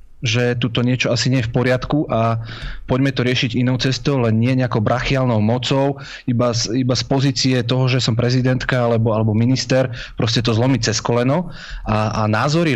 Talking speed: 190 wpm